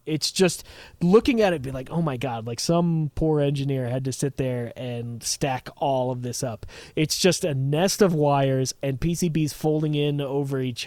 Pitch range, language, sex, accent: 130-175 Hz, English, male, American